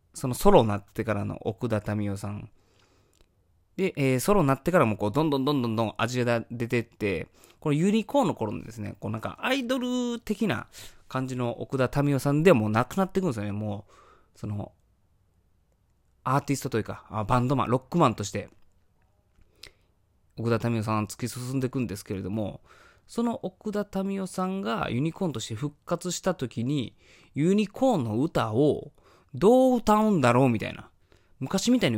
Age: 20-39